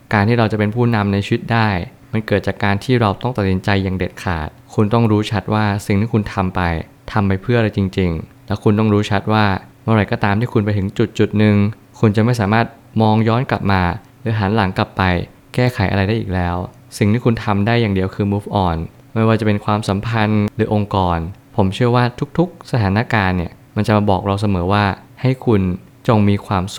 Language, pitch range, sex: Thai, 95-115 Hz, male